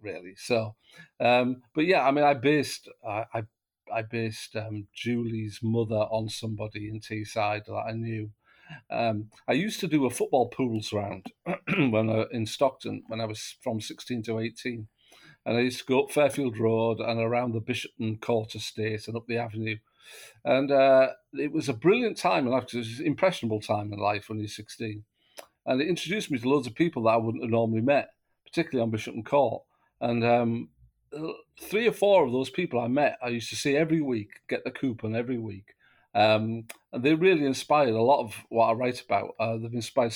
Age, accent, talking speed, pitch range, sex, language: 50-69, British, 200 wpm, 110-130 Hz, male, English